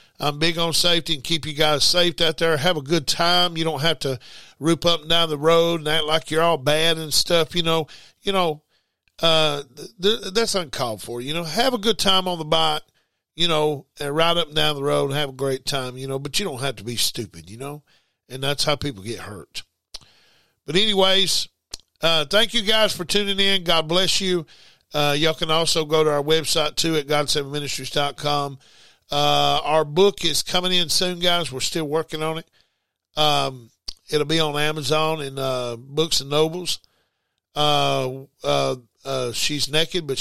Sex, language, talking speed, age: male, English, 205 wpm, 50-69